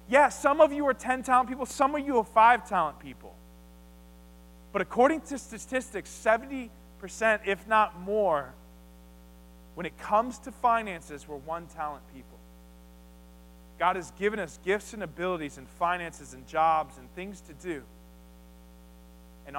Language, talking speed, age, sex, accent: English, 145 wpm, 20-39, male, American